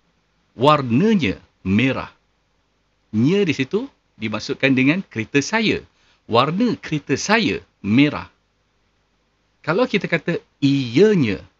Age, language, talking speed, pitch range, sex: 50-69, Malay, 90 wpm, 105-165 Hz, male